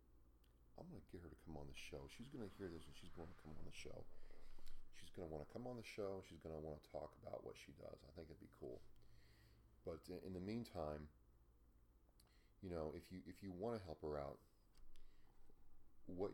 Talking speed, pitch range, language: 230 wpm, 75-95 Hz, English